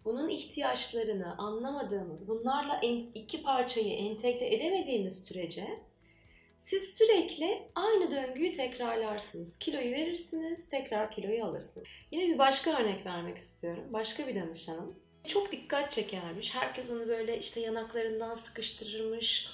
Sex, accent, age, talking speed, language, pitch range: female, native, 30-49, 115 wpm, Turkish, 205-295 Hz